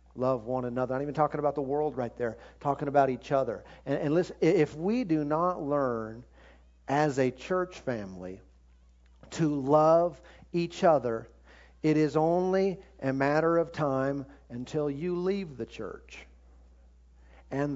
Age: 50-69